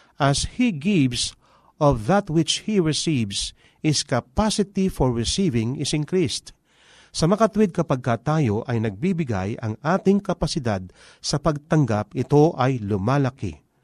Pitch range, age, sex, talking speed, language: 120-170 Hz, 40-59, male, 120 wpm, Filipino